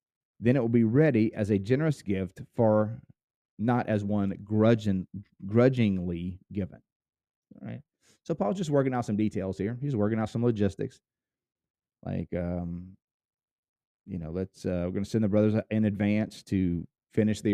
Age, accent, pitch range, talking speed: 30-49, American, 95-120 Hz, 165 wpm